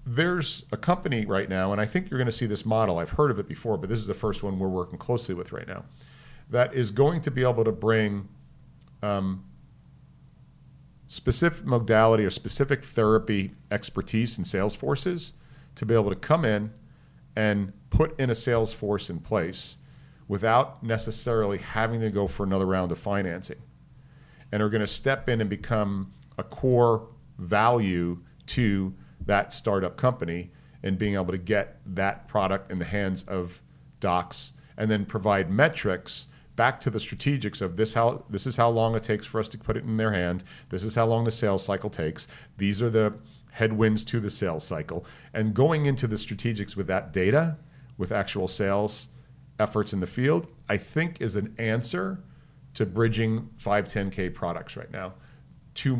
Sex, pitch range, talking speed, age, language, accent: male, 100-130 Hz, 180 wpm, 40-59, English, American